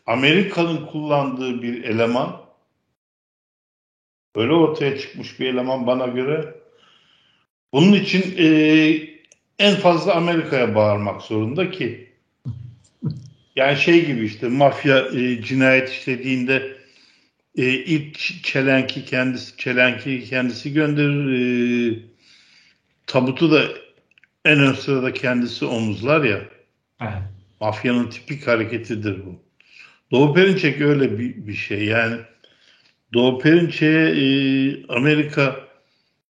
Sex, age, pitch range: male, 60-79, 115-150 Hz